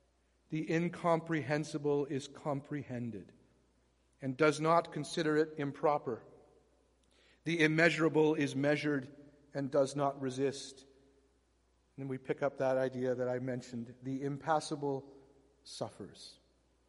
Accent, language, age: American, English, 50-69